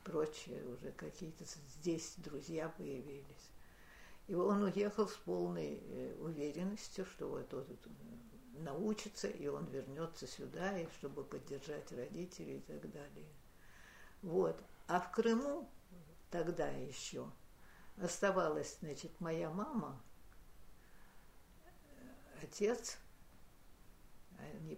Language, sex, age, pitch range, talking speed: Russian, female, 60-79, 120-180 Hz, 95 wpm